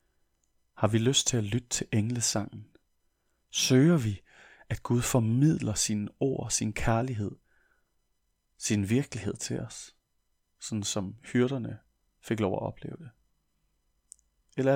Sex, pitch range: male, 95-125 Hz